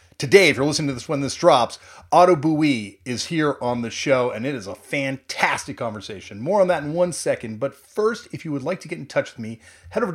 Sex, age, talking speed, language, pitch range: male, 30-49, 250 wpm, English, 115-175 Hz